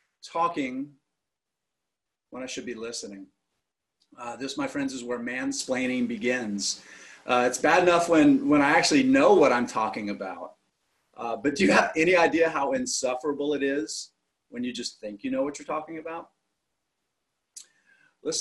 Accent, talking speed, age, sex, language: American, 160 wpm, 40-59, male, English